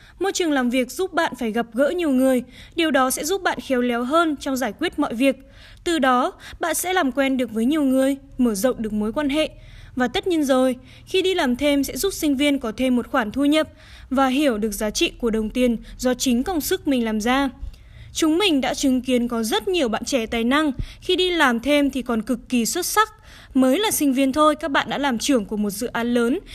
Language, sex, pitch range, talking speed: Vietnamese, female, 240-305 Hz, 250 wpm